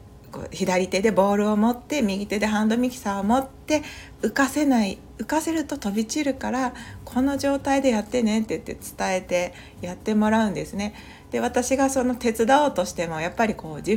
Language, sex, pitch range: Japanese, female, 175-245 Hz